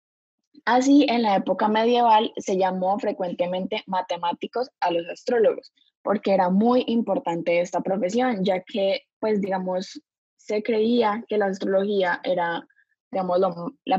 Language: Spanish